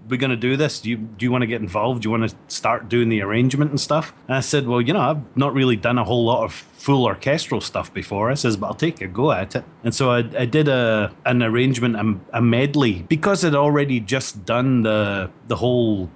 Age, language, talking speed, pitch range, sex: 30-49, English, 255 wpm, 110-130 Hz, male